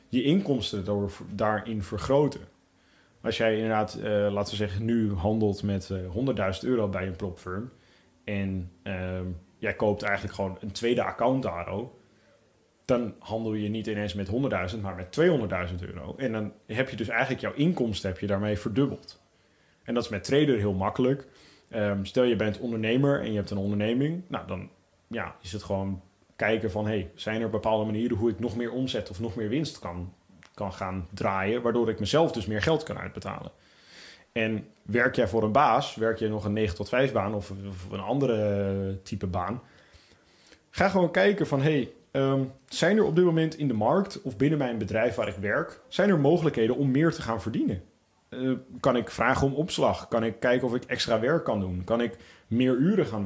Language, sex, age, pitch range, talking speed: Dutch, male, 30-49, 100-125 Hz, 195 wpm